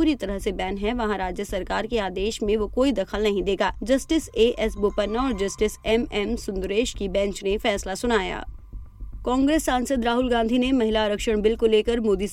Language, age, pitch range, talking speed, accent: Hindi, 20-39, 200-240 Hz, 200 wpm, native